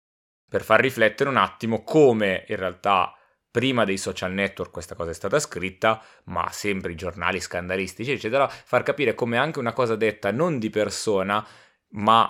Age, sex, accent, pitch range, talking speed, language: 20-39, male, native, 100-120 Hz, 165 wpm, Italian